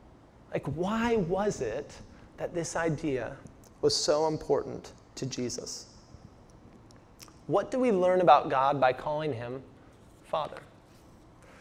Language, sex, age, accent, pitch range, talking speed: English, male, 30-49, American, 150-210 Hz, 115 wpm